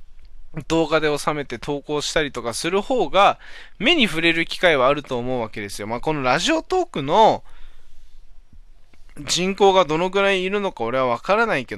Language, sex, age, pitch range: Japanese, male, 20-39, 130-210 Hz